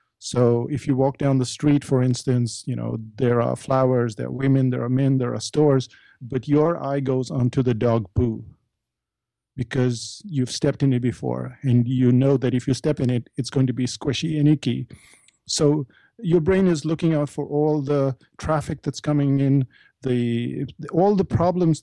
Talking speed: 190 wpm